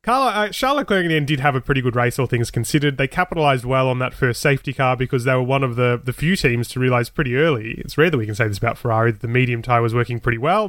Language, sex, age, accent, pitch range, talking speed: English, male, 30-49, Australian, 120-145 Hz, 300 wpm